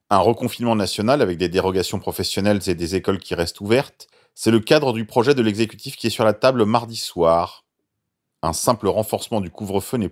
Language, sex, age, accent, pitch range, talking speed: French, male, 40-59, French, 100-125 Hz, 195 wpm